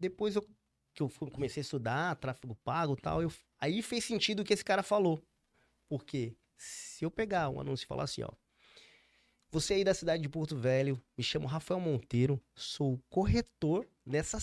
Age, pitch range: 20-39, 130-185 Hz